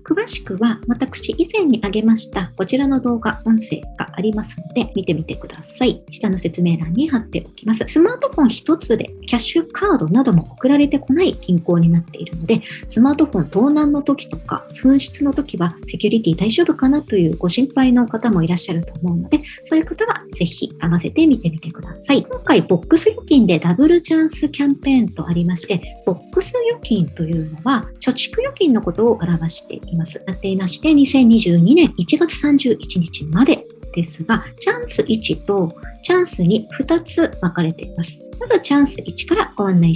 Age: 50-69